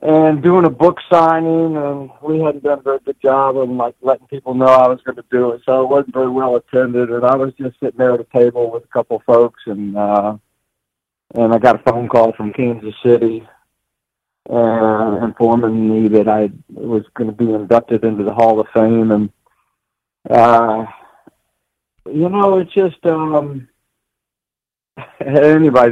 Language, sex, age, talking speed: English, male, 50-69, 180 wpm